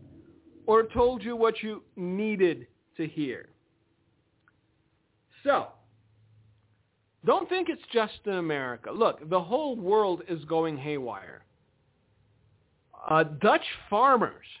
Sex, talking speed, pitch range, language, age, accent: male, 105 wpm, 165-215 Hz, English, 40-59, American